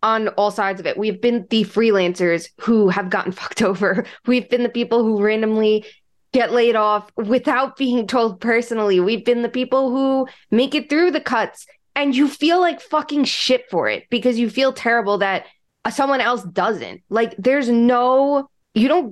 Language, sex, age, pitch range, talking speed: English, female, 20-39, 205-260 Hz, 180 wpm